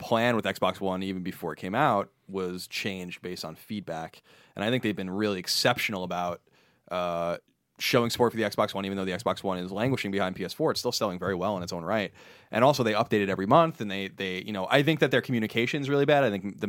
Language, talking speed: English, 250 wpm